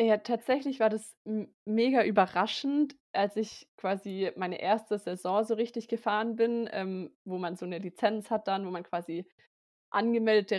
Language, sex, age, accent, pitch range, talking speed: German, female, 20-39, German, 200-230 Hz, 165 wpm